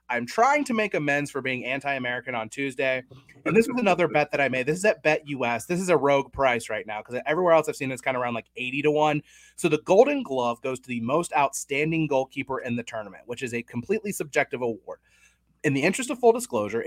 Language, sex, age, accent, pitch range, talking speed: English, male, 30-49, American, 130-180 Hz, 240 wpm